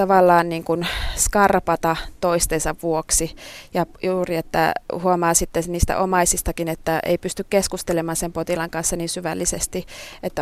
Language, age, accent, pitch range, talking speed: Finnish, 20-39, native, 165-185 Hz, 130 wpm